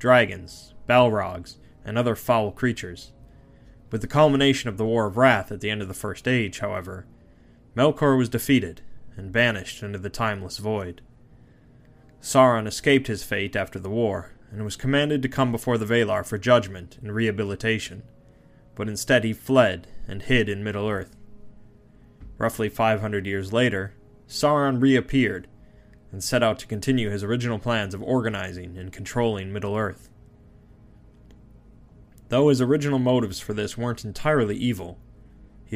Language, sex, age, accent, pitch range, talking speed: English, male, 20-39, American, 100-120 Hz, 145 wpm